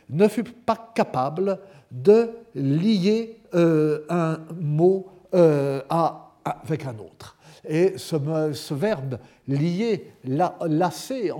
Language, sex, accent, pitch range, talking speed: French, male, French, 135-185 Hz, 125 wpm